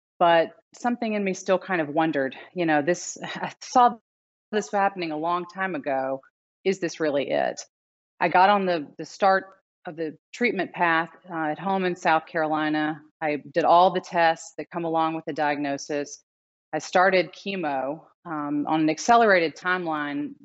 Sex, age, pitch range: female, 30-49, 150-180 Hz